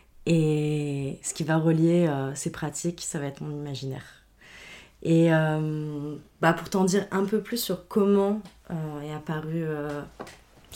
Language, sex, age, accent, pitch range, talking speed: French, female, 20-39, French, 145-170 Hz, 155 wpm